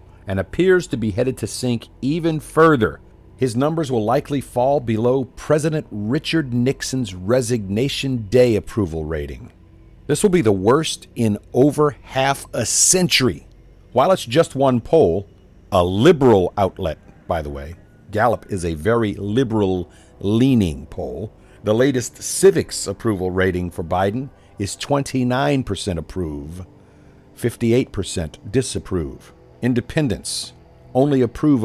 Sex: male